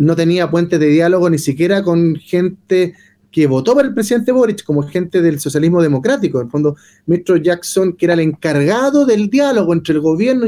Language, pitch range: Spanish, 150-205 Hz